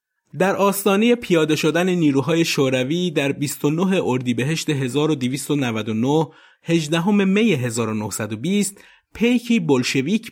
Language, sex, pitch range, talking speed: Persian, male, 115-175 Hz, 100 wpm